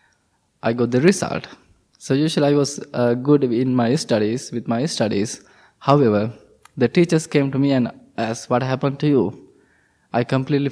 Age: 20-39